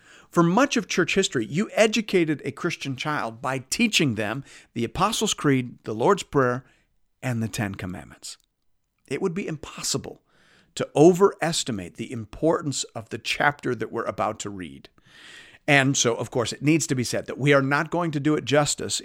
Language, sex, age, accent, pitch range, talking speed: English, male, 50-69, American, 115-155 Hz, 180 wpm